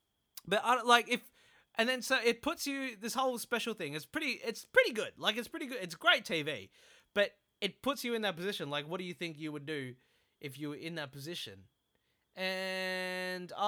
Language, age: English, 20-39